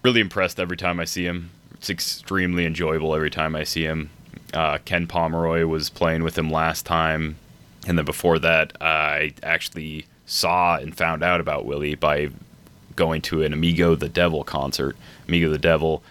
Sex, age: male, 20-39